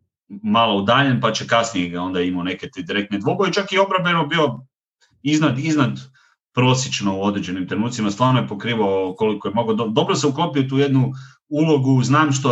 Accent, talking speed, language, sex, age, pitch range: Croatian, 165 wpm, English, male, 30-49, 105-135 Hz